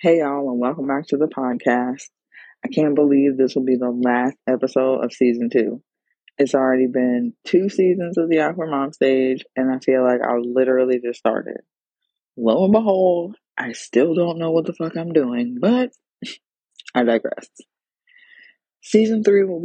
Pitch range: 130-165 Hz